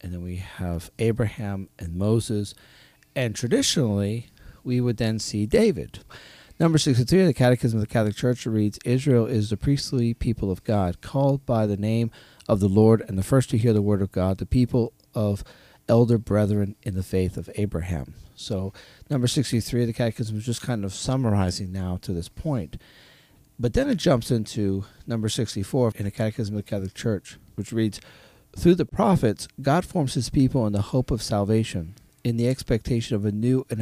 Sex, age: male, 40-59